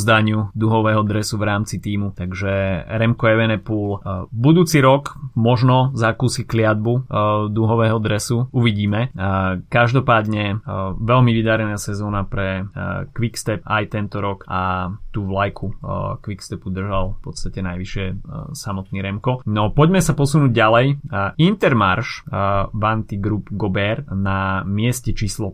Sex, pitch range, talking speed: male, 100-120 Hz, 115 wpm